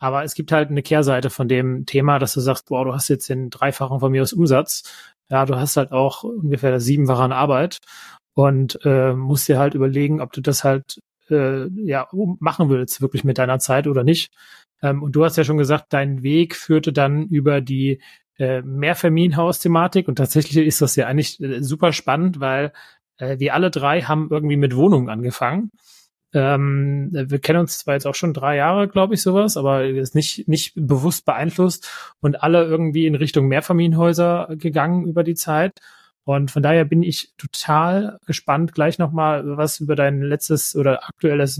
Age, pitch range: 30-49, 140-165 Hz